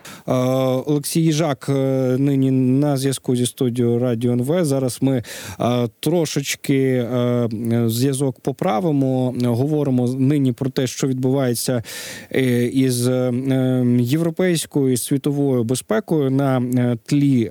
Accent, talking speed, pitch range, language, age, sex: native, 95 wpm, 115-140 Hz, Ukrainian, 20-39, male